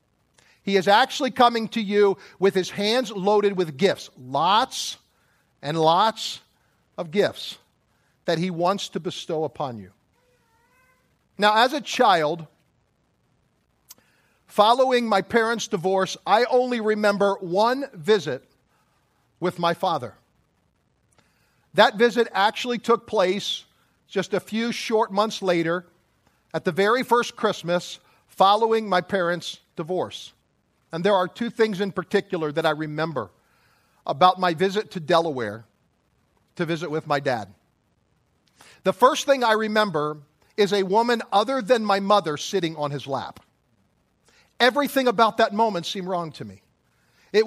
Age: 50-69